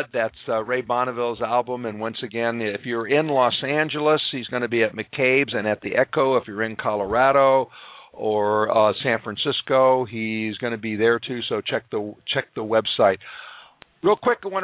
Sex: male